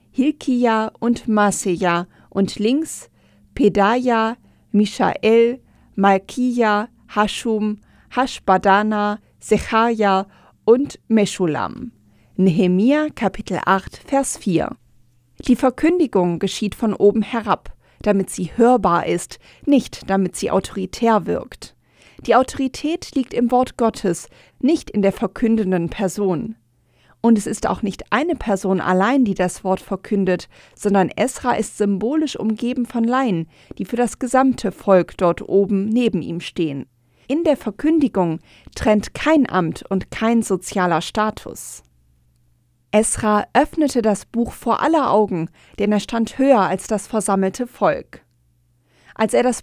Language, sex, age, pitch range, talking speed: German, female, 40-59, 190-240 Hz, 120 wpm